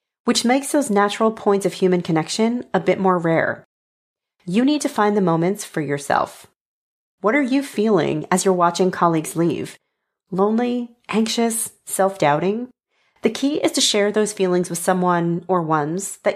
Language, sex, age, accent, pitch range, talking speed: English, female, 40-59, American, 175-220 Hz, 160 wpm